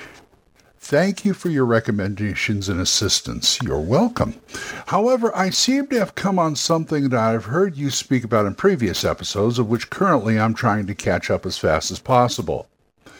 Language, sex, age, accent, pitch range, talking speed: English, male, 60-79, American, 95-145 Hz, 175 wpm